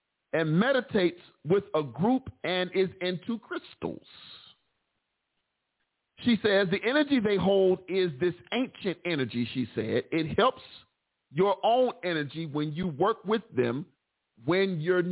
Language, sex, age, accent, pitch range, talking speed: English, male, 40-59, American, 145-215 Hz, 130 wpm